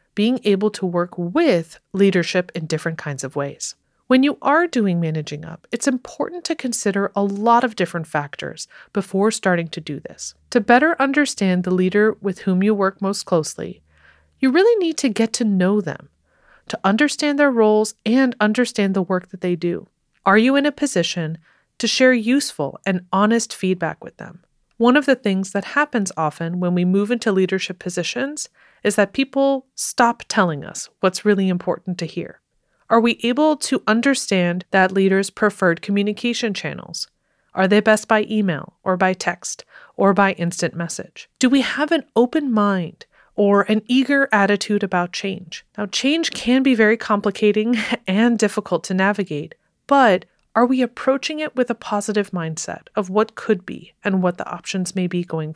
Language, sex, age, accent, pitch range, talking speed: English, female, 30-49, American, 180-240 Hz, 175 wpm